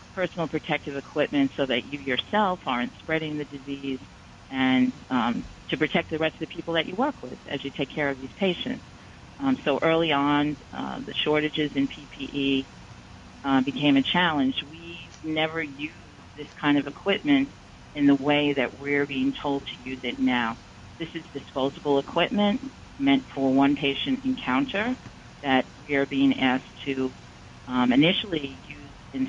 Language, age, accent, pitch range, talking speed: English, 40-59, American, 130-155 Hz, 160 wpm